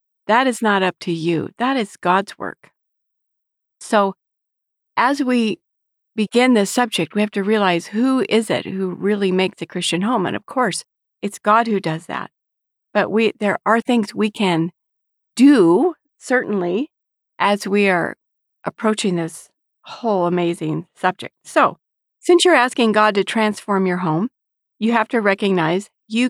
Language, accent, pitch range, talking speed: English, American, 185-240 Hz, 155 wpm